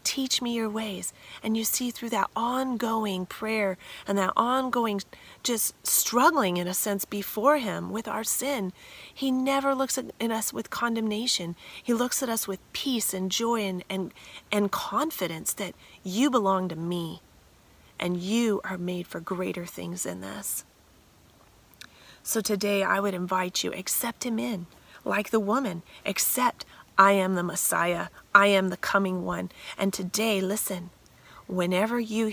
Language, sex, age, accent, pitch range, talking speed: English, female, 30-49, American, 180-225 Hz, 155 wpm